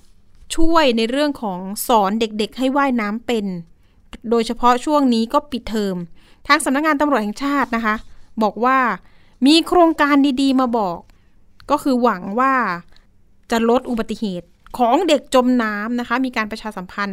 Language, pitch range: Thai, 210-265 Hz